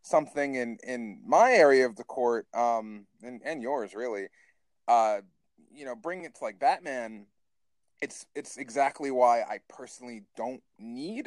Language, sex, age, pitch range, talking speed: English, male, 30-49, 120-155 Hz, 155 wpm